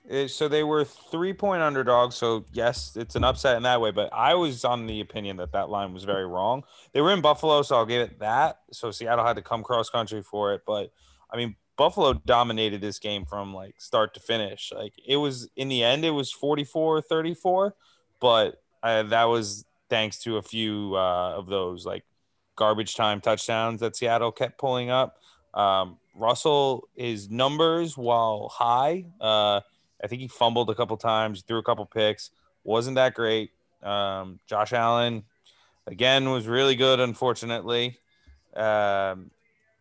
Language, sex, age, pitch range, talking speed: English, male, 20-39, 105-125 Hz, 175 wpm